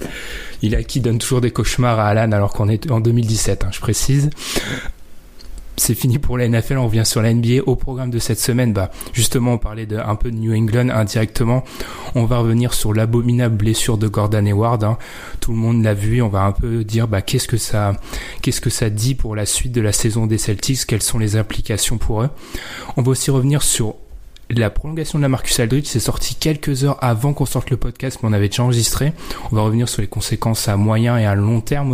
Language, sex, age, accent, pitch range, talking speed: French, male, 20-39, French, 110-125 Hz, 230 wpm